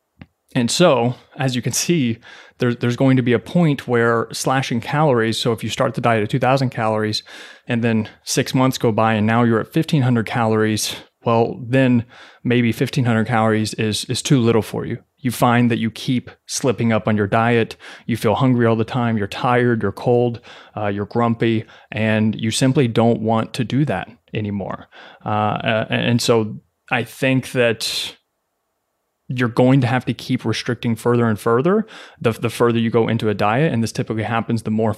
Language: English